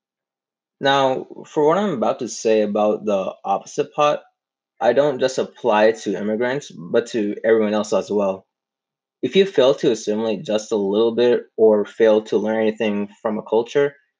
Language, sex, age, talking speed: English, male, 20-39, 175 wpm